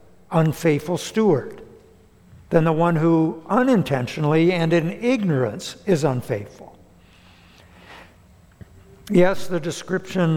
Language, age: English, 60-79